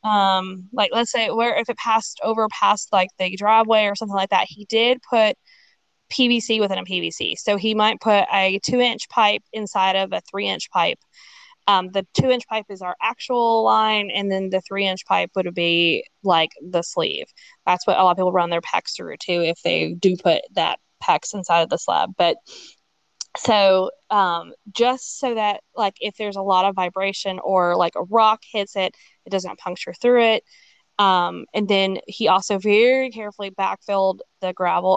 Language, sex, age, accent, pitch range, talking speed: English, female, 20-39, American, 185-230 Hz, 195 wpm